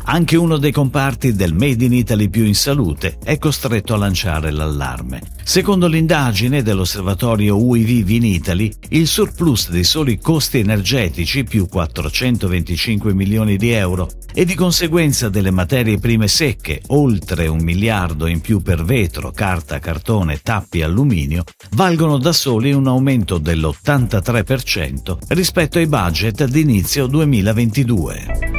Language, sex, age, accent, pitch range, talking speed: Italian, male, 50-69, native, 90-140 Hz, 130 wpm